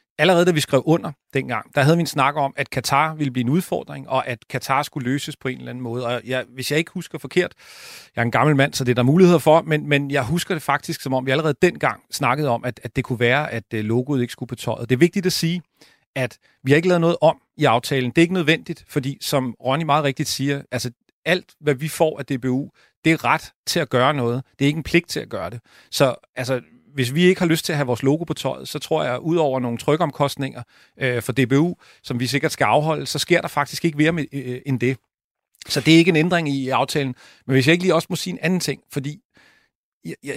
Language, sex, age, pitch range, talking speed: Danish, male, 40-59, 130-165 Hz, 260 wpm